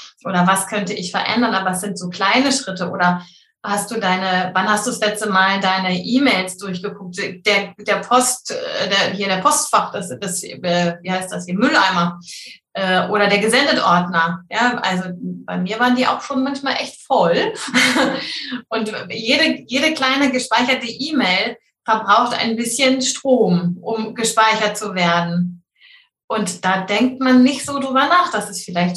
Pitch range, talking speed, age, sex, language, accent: 195-245 Hz, 155 wpm, 30-49, female, German, German